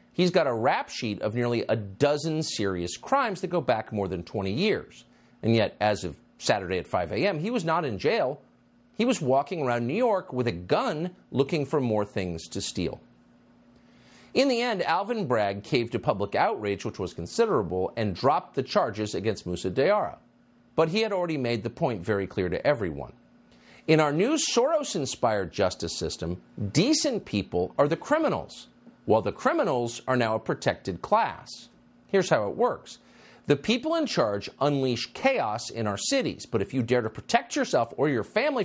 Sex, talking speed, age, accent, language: male, 185 wpm, 50-69, American, English